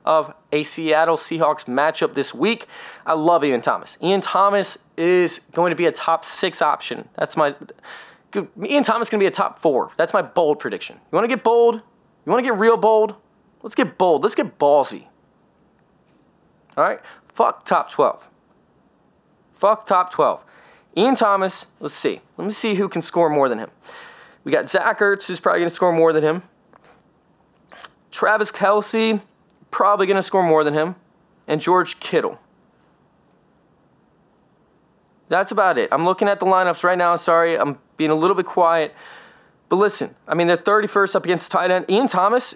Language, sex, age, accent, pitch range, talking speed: English, male, 20-39, American, 165-200 Hz, 180 wpm